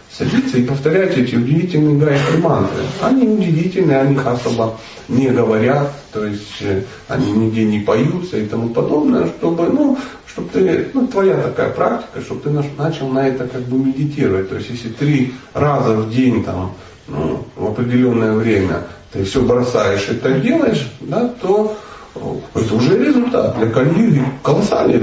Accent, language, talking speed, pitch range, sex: native, Russian, 155 wpm, 110-150 Hz, male